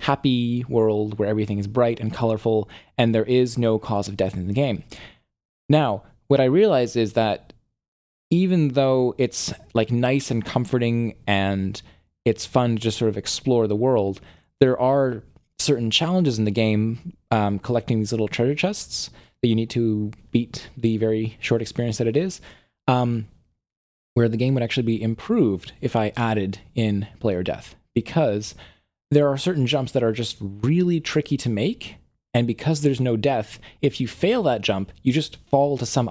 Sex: male